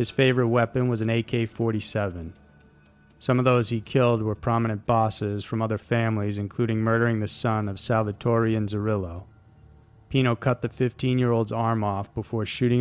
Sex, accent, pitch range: male, American, 100-120 Hz